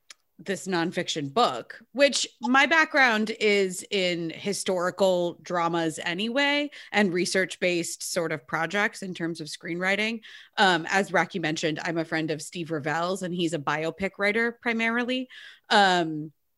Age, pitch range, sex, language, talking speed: 30-49, 180-240 Hz, female, English, 135 wpm